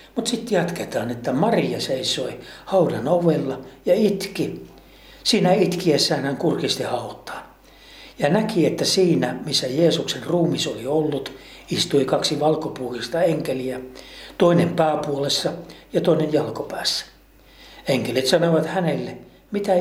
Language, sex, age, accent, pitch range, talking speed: Finnish, male, 60-79, native, 130-175 Hz, 110 wpm